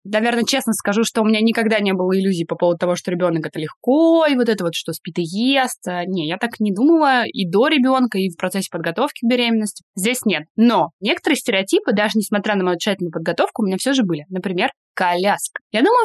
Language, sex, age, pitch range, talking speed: Russian, female, 20-39, 180-245 Hz, 220 wpm